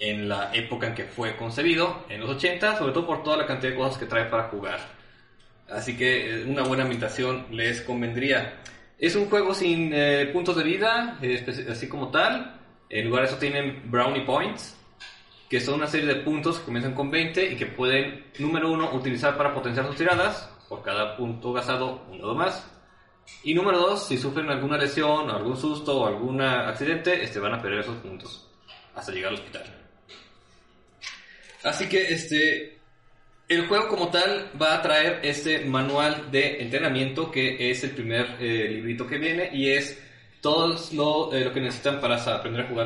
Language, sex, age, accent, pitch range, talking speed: Spanish, male, 20-39, Mexican, 120-155 Hz, 185 wpm